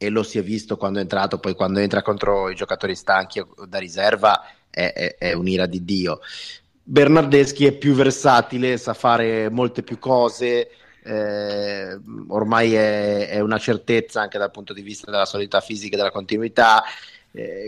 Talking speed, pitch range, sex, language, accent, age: 170 wpm, 105-125 Hz, male, Italian, native, 30-49